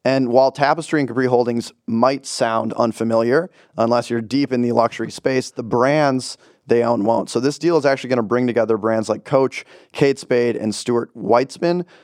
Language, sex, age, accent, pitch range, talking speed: English, male, 30-49, American, 115-130 Hz, 190 wpm